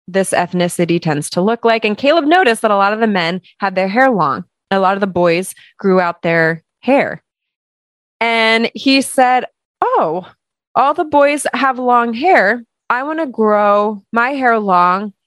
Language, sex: English, female